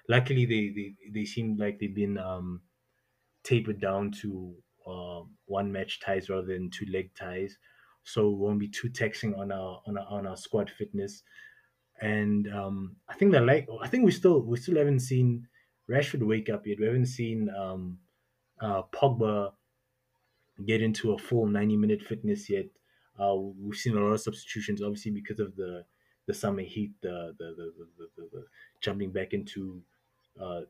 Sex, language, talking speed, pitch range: male, English, 180 wpm, 100-120 Hz